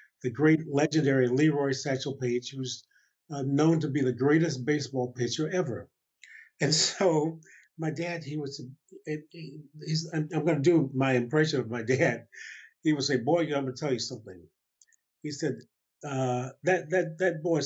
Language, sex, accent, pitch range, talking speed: English, male, American, 130-170 Hz, 160 wpm